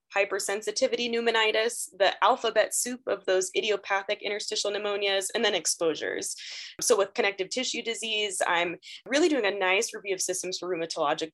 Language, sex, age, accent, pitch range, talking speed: English, female, 20-39, American, 175-215 Hz, 150 wpm